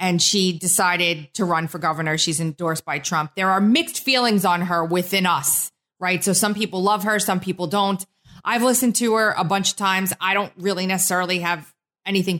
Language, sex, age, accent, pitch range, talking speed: English, female, 30-49, American, 180-225 Hz, 205 wpm